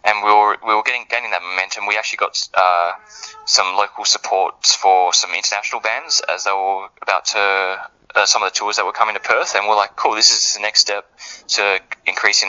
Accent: Australian